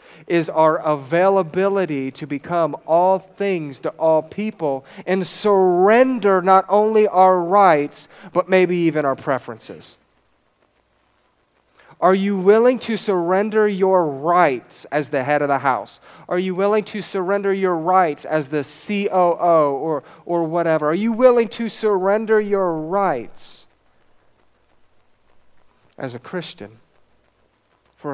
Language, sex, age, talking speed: English, male, 40-59, 125 wpm